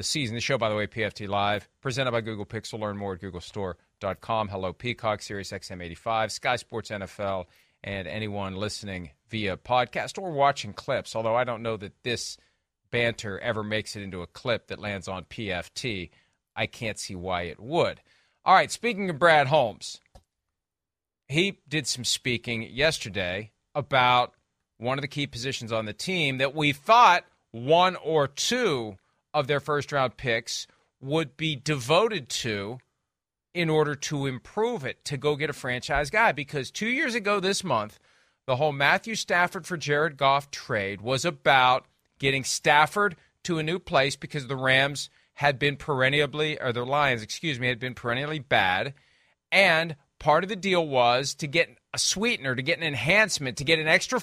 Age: 40-59